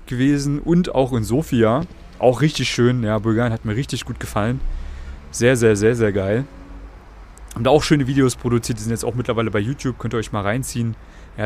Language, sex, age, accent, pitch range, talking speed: German, male, 30-49, German, 110-130 Hz, 205 wpm